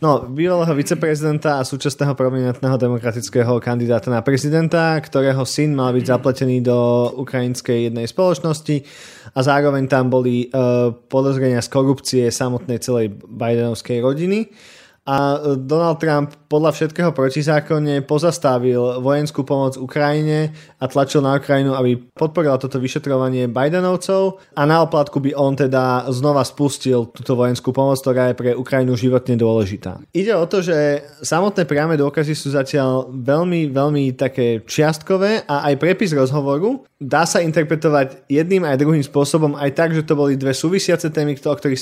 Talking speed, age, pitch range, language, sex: 145 wpm, 20-39, 125-150 Hz, Slovak, male